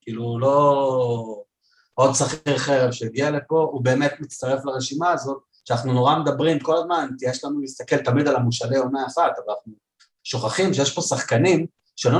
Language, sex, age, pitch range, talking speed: Hebrew, male, 30-49, 110-140 Hz, 160 wpm